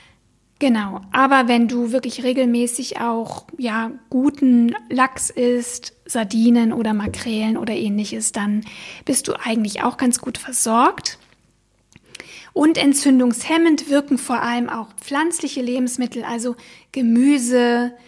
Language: German